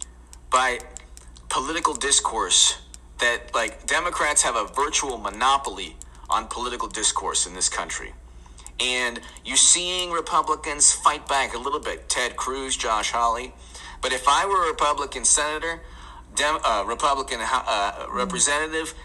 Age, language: 40-59, Polish